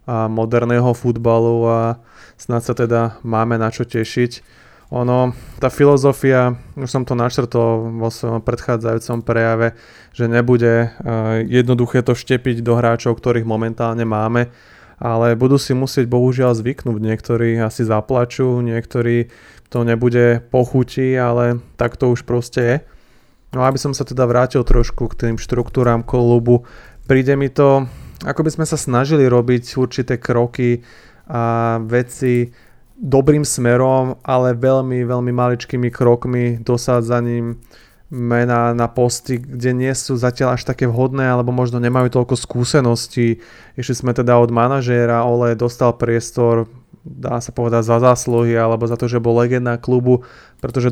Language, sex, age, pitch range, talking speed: Slovak, male, 20-39, 115-125 Hz, 140 wpm